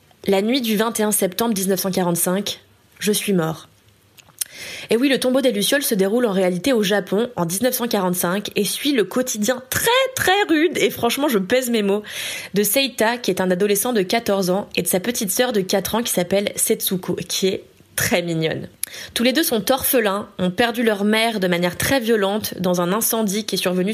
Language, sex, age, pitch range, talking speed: French, female, 20-39, 190-245 Hz, 200 wpm